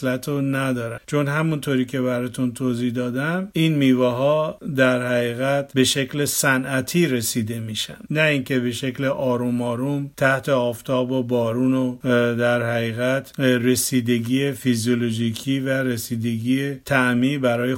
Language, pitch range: Persian, 125-155 Hz